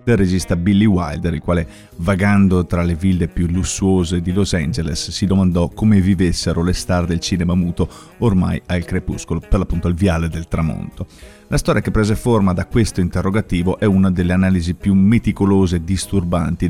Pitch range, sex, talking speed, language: 85-100 Hz, male, 175 wpm, Italian